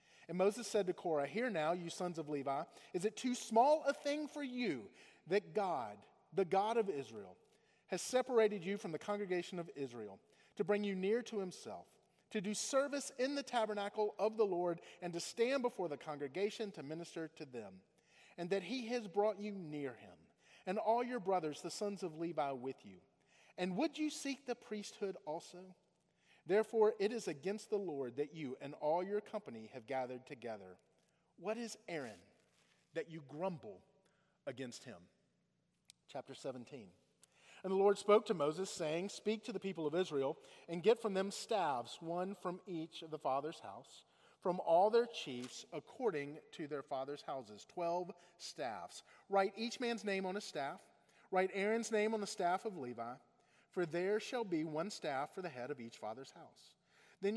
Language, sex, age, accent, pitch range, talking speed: English, male, 40-59, American, 155-210 Hz, 180 wpm